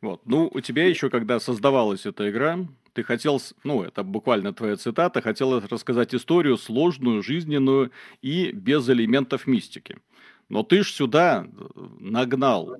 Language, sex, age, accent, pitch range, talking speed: Russian, male, 30-49, native, 120-145 Hz, 140 wpm